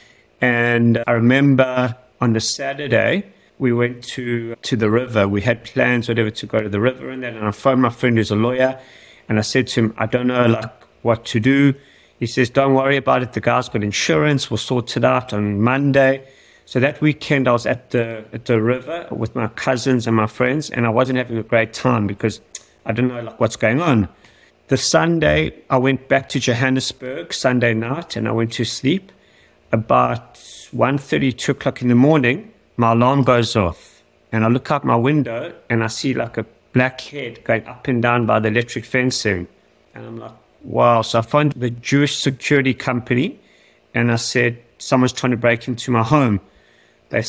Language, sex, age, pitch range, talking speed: English, male, 30-49, 115-135 Hz, 200 wpm